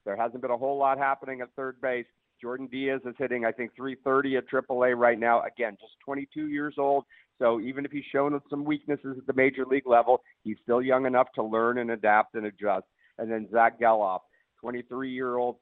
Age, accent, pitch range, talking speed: 50-69, American, 120-145 Hz, 205 wpm